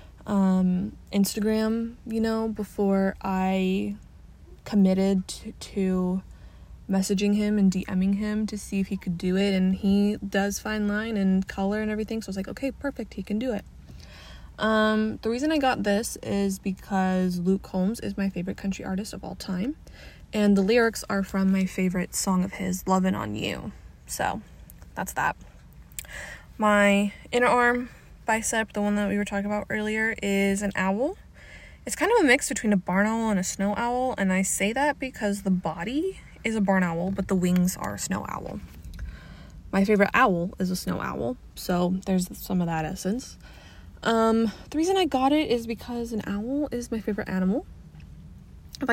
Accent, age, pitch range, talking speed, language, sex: American, 20-39, 190-225 Hz, 180 wpm, English, female